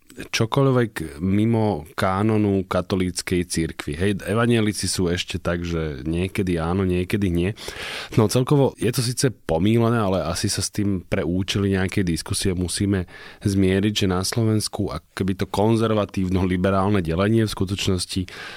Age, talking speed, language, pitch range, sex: 20-39, 130 wpm, Slovak, 90-105 Hz, male